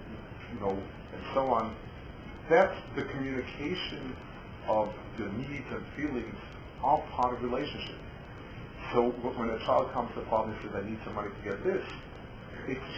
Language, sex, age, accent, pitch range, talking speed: English, male, 40-59, American, 110-135 Hz, 155 wpm